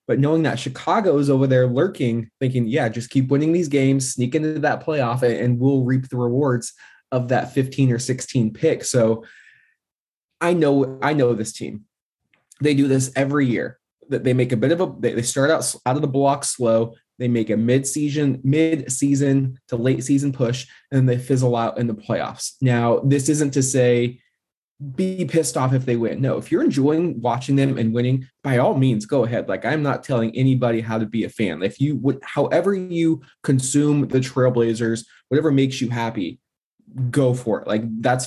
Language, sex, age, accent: English, male, 20-39, American